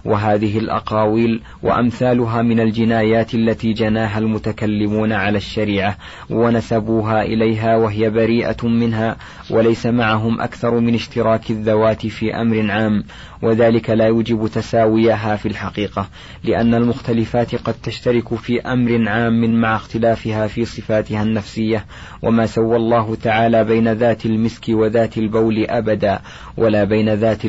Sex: male